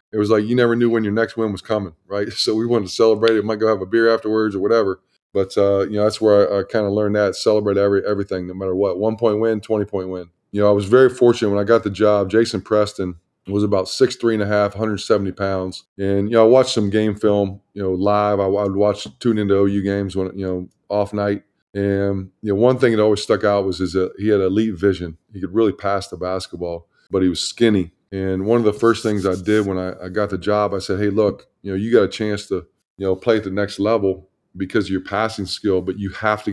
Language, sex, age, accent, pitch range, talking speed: English, male, 20-39, American, 95-110 Hz, 270 wpm